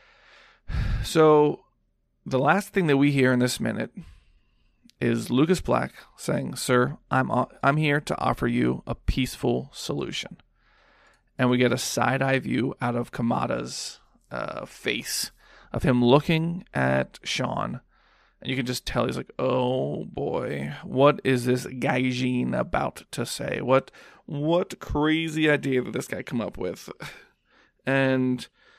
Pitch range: 120-145 Hz